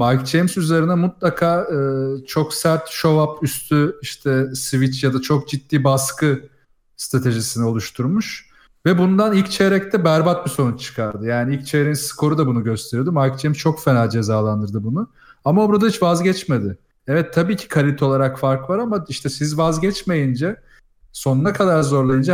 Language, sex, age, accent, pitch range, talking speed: Turkish, male, 40-59, native, 130-165 Hz, 155 wpm